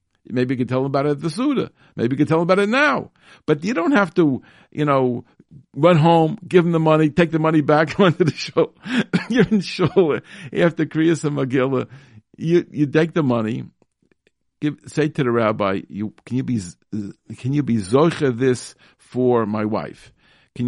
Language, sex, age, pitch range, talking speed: English, male, 50-69, 110-145 Hz, 200 wpm